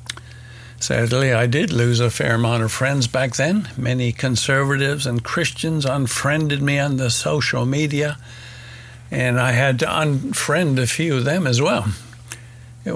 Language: English